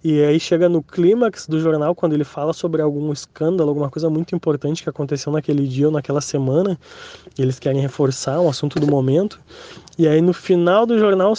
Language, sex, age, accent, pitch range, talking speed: Portuguese, male, 20-39, Brazilian, 145-175 Hz, 200 wpm